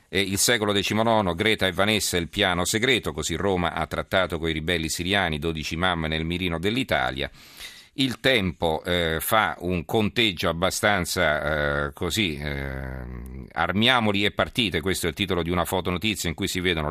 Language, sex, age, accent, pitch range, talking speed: Italian, male, 40-59, native, 80-100 Hz, 170 wpm